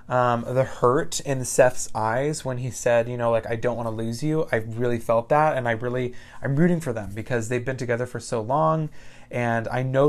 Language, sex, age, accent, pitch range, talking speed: English, male, 20-39, American, 115-135 Hz, 230 wpm